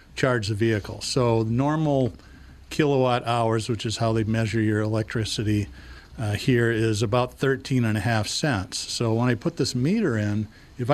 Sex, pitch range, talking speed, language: male, 110-130 Hz, 170 wpm, English